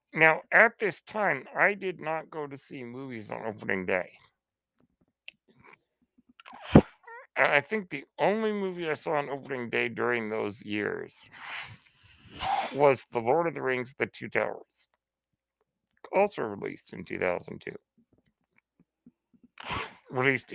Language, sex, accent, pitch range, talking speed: English, male, American, 125-185 Hz, 120 wpm